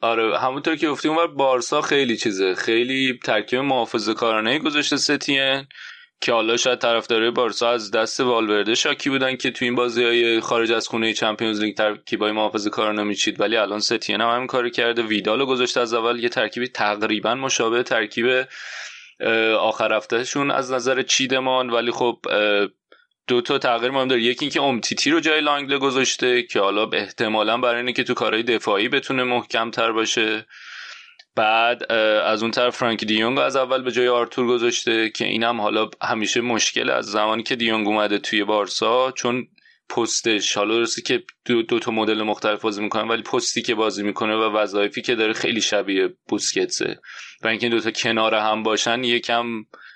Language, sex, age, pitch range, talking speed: Persian, male, 20-39, 110-130 Hz, 170 wpm